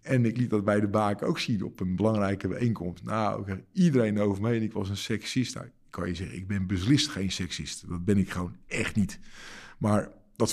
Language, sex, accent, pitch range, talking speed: Dutch, male, Dutch, 105-130 Hz, 230 wpm